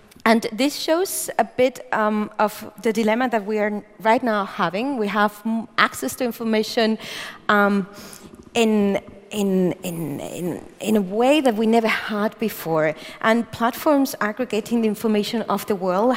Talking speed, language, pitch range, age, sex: 150 wpm, German, 205-250 Hz, 40-59, female